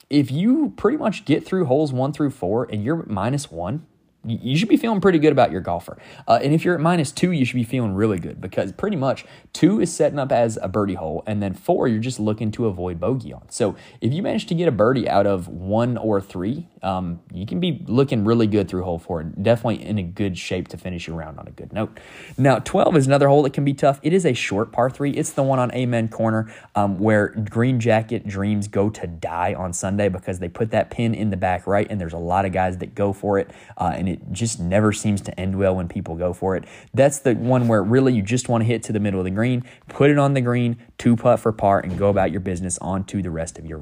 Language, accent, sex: English, American, male